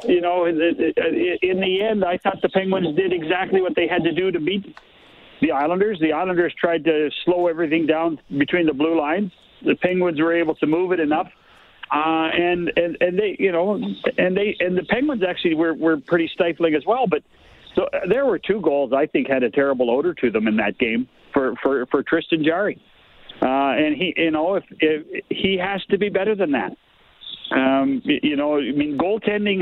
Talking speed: 205 wpm